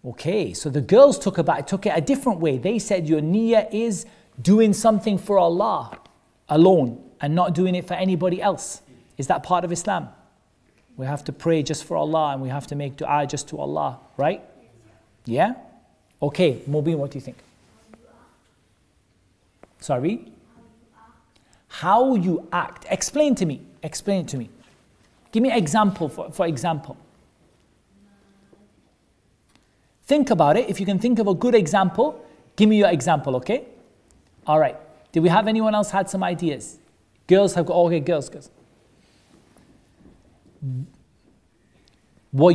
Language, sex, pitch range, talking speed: English, male, 145-210 Hz, 150 wpm